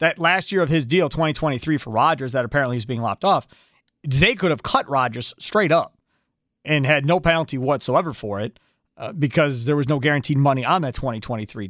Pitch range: 130-165 Hz